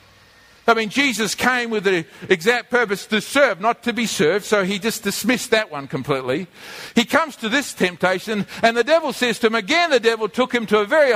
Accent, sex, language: Australian, male, English